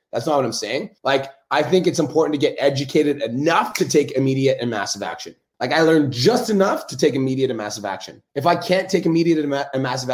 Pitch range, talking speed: 130-165 Hz, 230 wpm